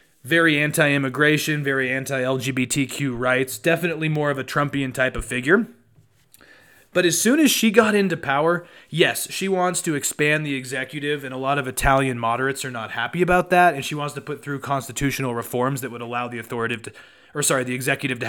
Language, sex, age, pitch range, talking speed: English, male, 20-39, 130-165 Hz, 190 wpm